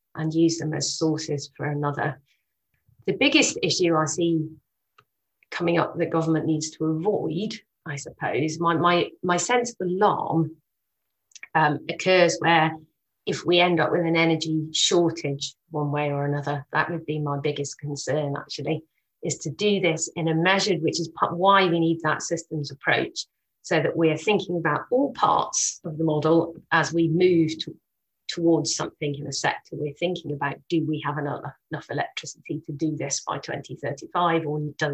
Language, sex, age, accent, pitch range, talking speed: English, female, 30-49, British, 150-170 Hz, 170 wpm